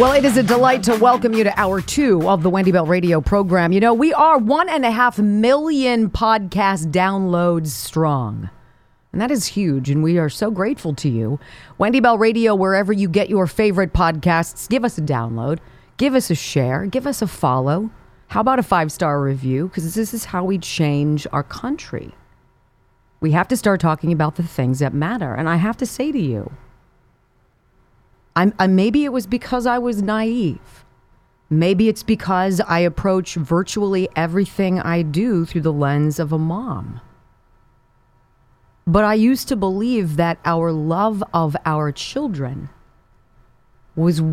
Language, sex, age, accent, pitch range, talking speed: English, female, 40-59, American, 150-215 Hz, 170 wpm